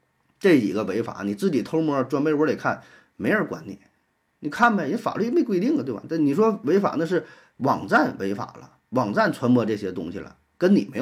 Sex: male